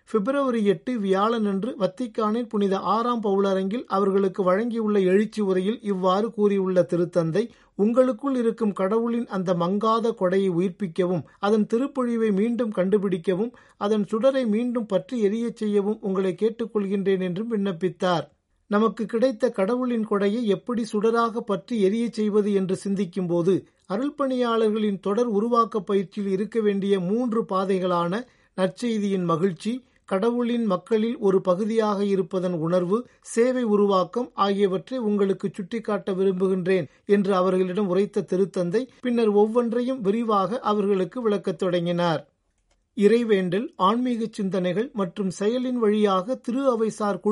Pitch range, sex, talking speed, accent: 190-230 Hz, male, 110 wpm, native